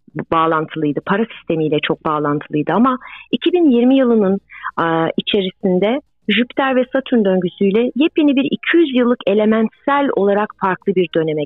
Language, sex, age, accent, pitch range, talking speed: Turkish, female, 40-59, native, 175-235 Hz, 115 wpm